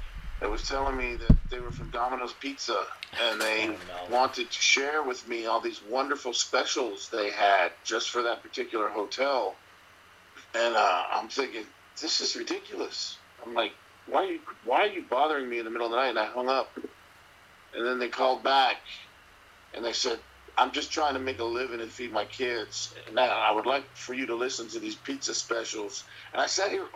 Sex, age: male, 50-69